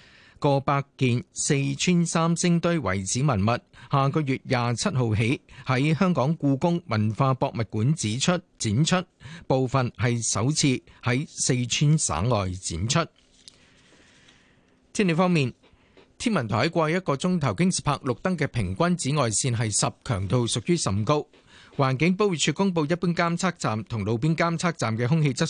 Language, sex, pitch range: Chinese, male, 120-165 Hz